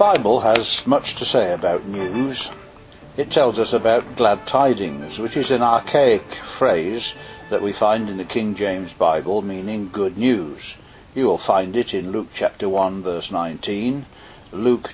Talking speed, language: 165 wpm, English